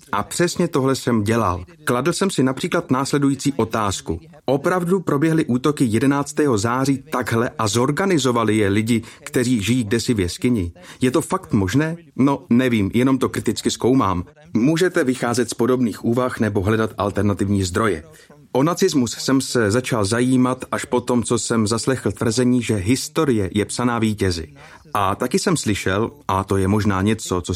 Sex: male